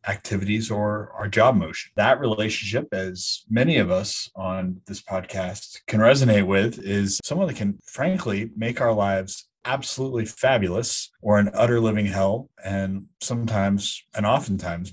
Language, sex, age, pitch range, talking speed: English, male, 30-49, 95-120 Hz, 145 wpm